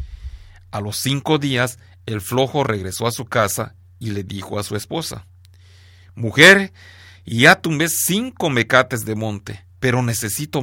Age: 40-59